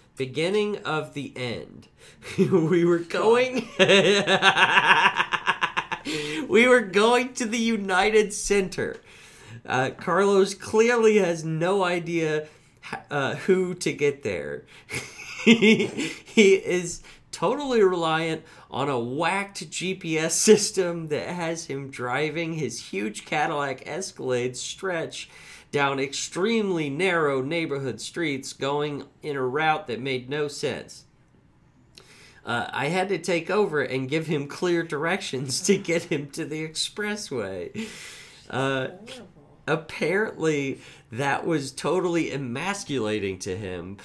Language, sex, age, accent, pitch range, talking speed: English, male, 40-59, American, 135-190 Hz, 110 wpm